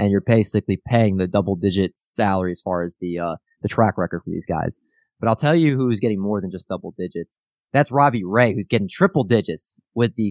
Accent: American